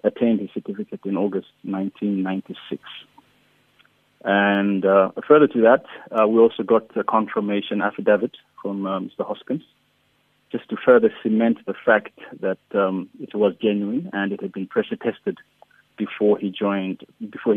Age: 30-49